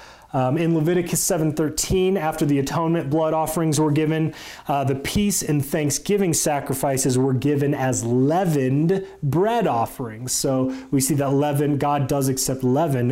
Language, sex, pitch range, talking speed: English, male, 135-170 Hz, 145 wpm